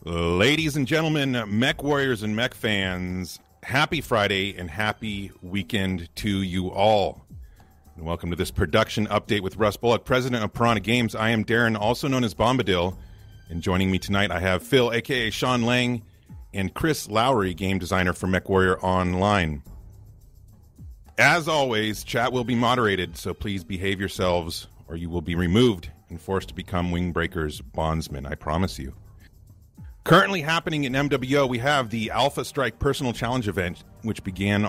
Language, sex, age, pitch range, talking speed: English, male, 40-59, 95-120 Hz, 165 wpm